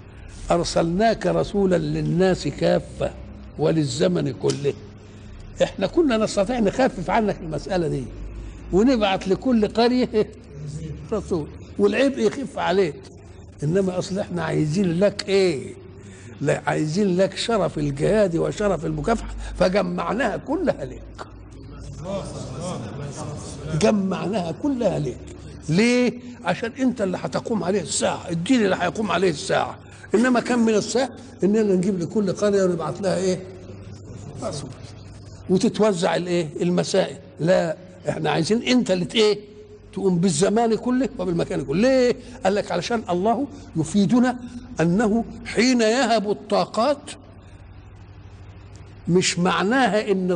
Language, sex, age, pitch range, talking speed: Arabic, male, 60-79, 145-215 Hz, 105 wpm